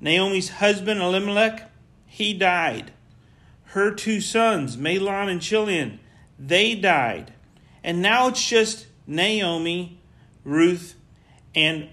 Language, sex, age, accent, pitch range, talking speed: English, male, 40-59, American, 140-195 Hz, 100 wpm